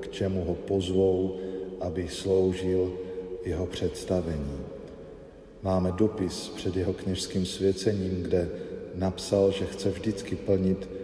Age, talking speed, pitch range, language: 50-69, 105 wpm, 90-100 Hz, Slovak